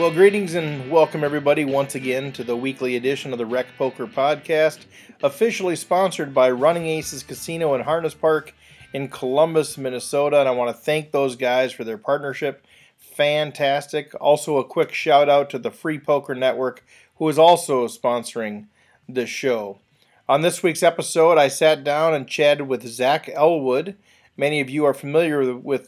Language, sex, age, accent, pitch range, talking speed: English, male, 40-59, American, 130-155 Hz, 165 wpm